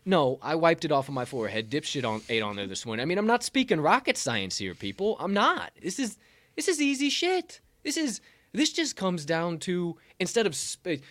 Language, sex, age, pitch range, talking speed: English, male, 20-39, 120-180 Hz, 225 wpm